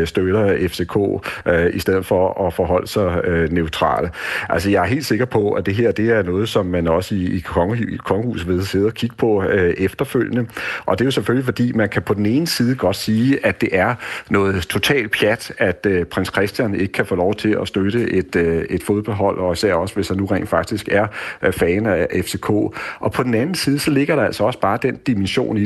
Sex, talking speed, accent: male, 230 wpm, native